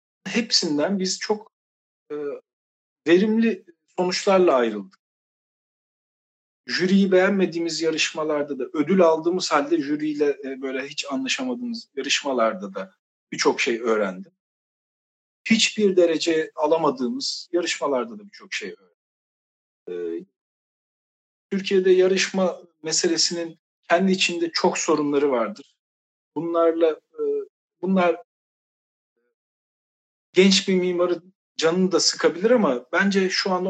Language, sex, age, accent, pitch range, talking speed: Turkish, male, 50-69, native, 150-200 Hz, 95 wpm